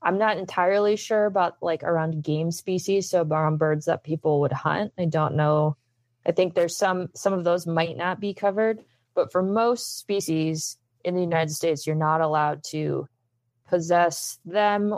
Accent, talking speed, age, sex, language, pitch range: American, 175 wpm, 20-39, female, English, 155-185 Hz